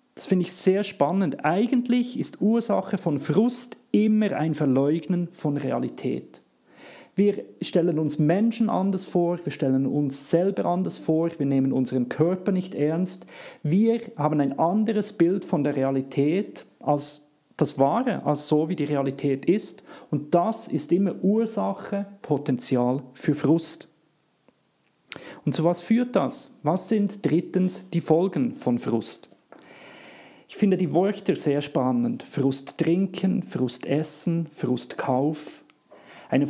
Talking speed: 135 wpm